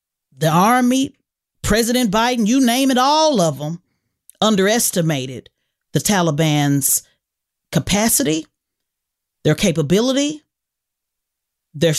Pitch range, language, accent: 160-230 Hz, English, American